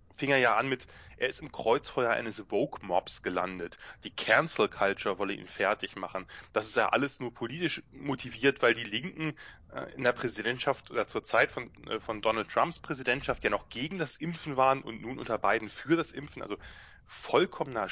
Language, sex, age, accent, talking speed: English, male, 30-49, German, 180 wpm